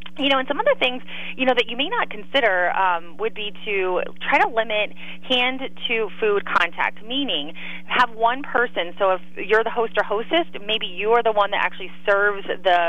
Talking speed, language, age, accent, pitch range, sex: 200 wpm, English, 30-49, American, 175-215 Hz, female